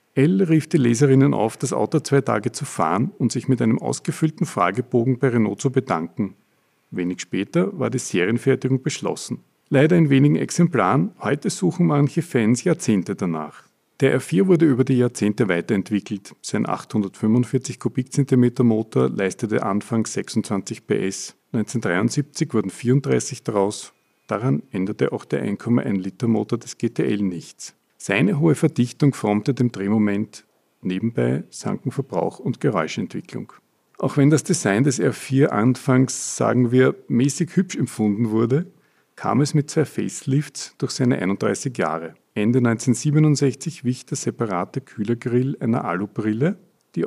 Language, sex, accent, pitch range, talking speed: German, male, Austrian, 105-145 Hz, 135 wpm